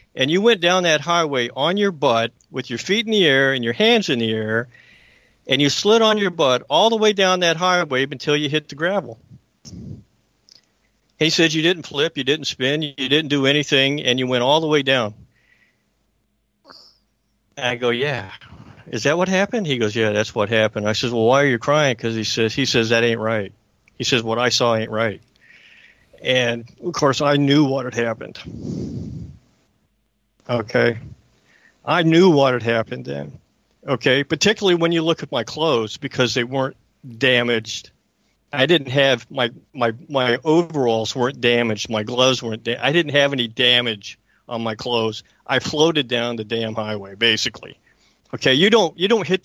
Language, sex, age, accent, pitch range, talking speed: English, male, 50-69, American, 115-155 Hz, 185 wpm